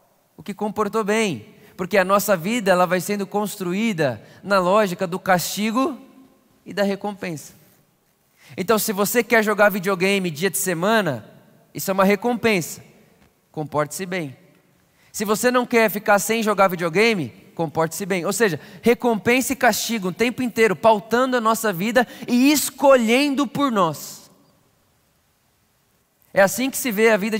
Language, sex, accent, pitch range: Portuguese, male, Brazilian, 170-225 Hz